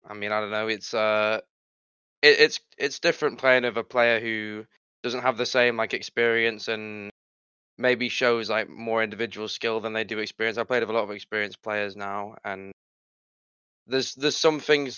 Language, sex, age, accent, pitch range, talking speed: English, male, 10-29, British, 105-115 Hz, 185 wpm